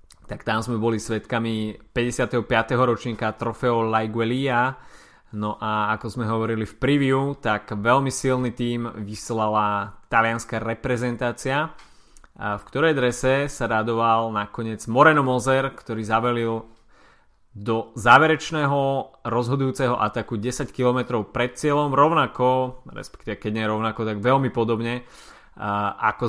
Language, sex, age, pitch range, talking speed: Slovak, male, 20-39, 110-125 Hz, 115 wpm